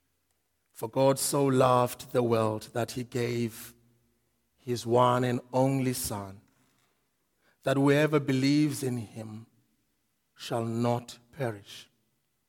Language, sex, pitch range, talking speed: English, male, 125-155 Hz, 105 wpm